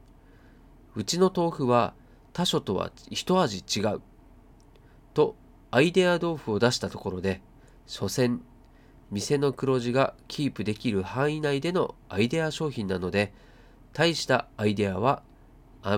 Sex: male